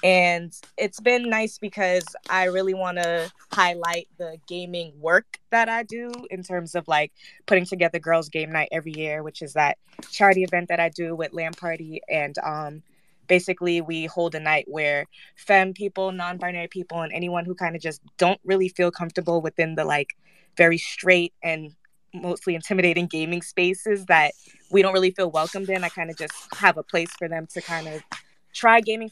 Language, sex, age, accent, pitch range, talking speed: English, female, 20-39, American, 165-190 Hz, 185 wpm